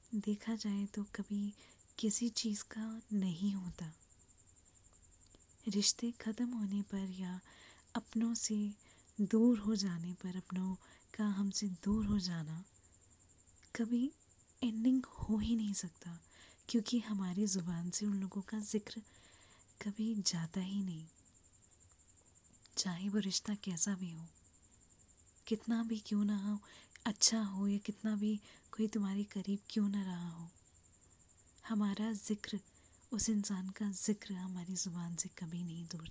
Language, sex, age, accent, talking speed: Hindi, female, 20-39, native, 130 wpm